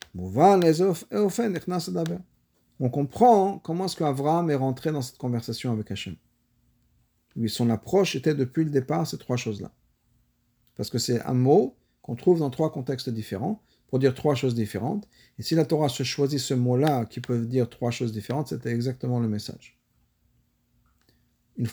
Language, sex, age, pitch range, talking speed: French, male, 50-69, 115-150 Hz, 155 wpm